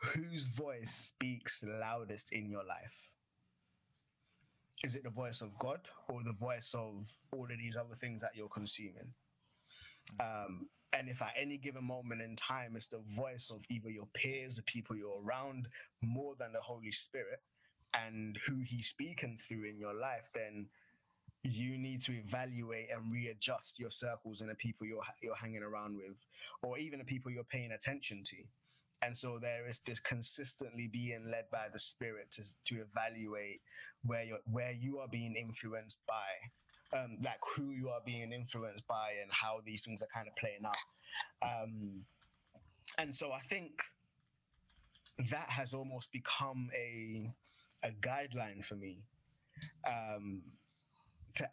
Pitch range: 110-130 Hz